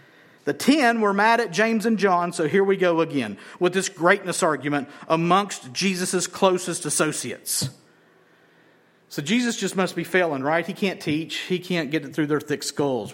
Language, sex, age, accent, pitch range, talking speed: English, male, 50-69, American, 160-230 Hz, 180 wpm